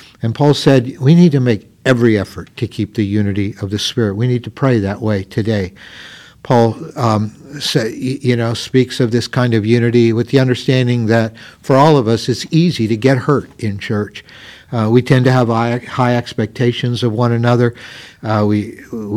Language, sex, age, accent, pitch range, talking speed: English, male, 60-79, American, 110-130 Hz, 190 wpm